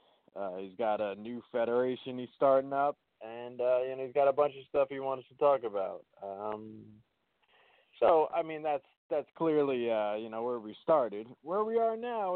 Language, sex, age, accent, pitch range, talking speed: English, male, 20-39, American, 120-160 Hz, 200 wpm